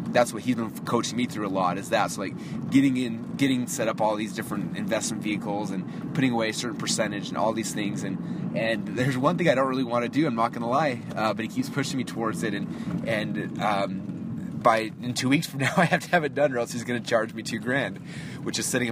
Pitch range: 100-135 Hz